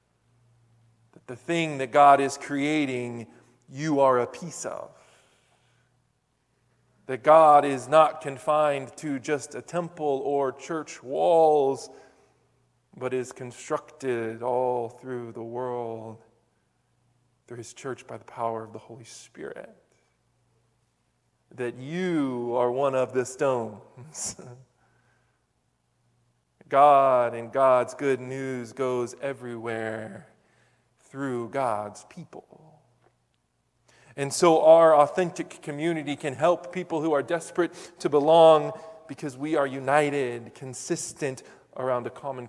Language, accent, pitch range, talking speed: English, American, 120-150 Hz, 110 wpm